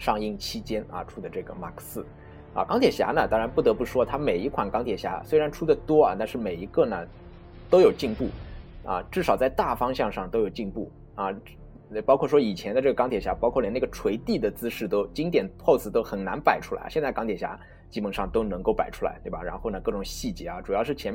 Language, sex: Chinese, male